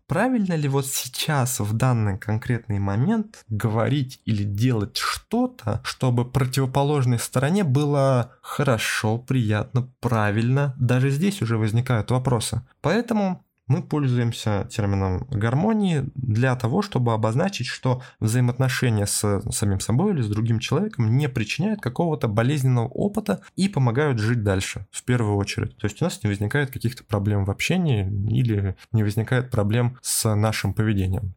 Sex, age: male, 20-39